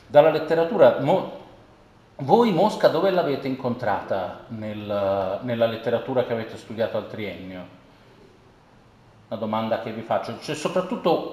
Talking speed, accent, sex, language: 110 wpm, native, male, Italian